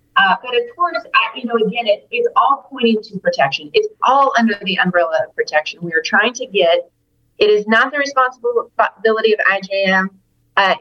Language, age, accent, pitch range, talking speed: English, 30-49, American, 170-230 Hz, 190 wpm